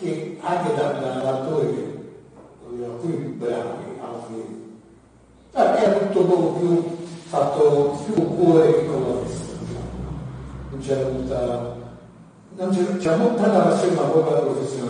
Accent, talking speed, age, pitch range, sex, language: native, 120 wpm, 40-59, 125-180 Hz, male, Italian